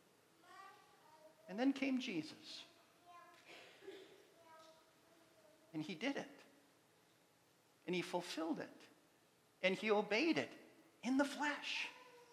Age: 50-69